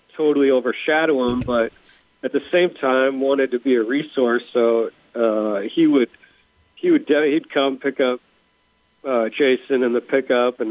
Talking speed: 165 wpm